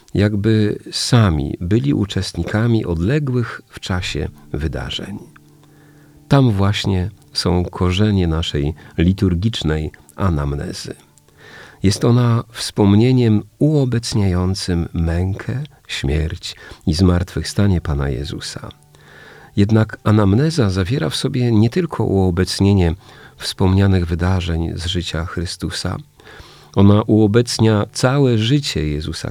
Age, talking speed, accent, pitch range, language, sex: 40-59, 90 wpm, native, 85-115 Hz, Polish, male